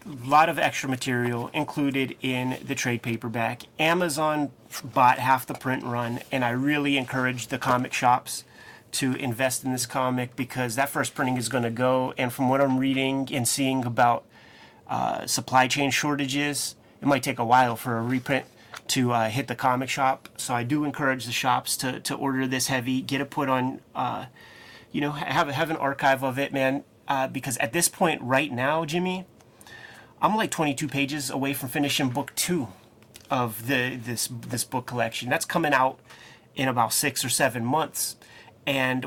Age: 30-49